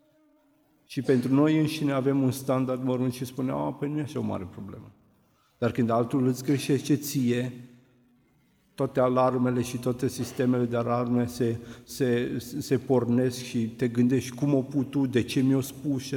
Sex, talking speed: male, 175 wpm